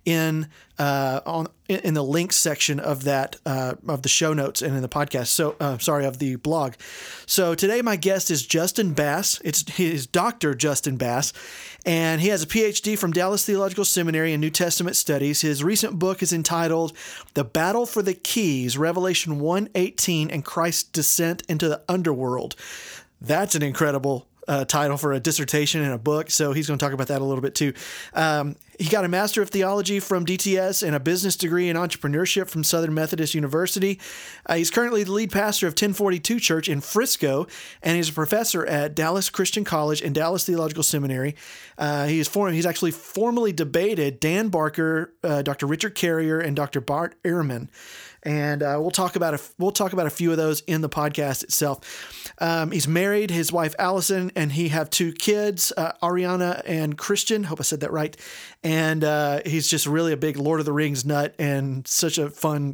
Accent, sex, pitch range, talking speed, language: American, male, 150-185 Hz, 195 wpm, English